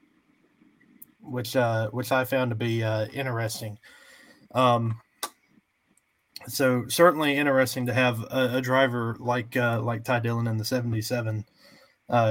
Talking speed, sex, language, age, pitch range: 125 wpm, male, English, 20-39, 120-145 Hz